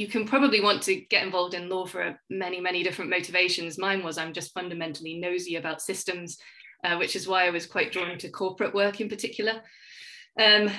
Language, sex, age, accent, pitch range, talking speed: English, female, 20-39, British, 180-200 Hz, 200 wpm